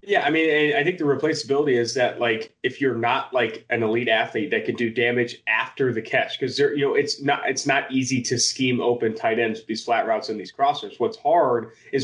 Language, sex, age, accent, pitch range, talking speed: English, male, 20-39, American, 120-150 Hz, 240 wpm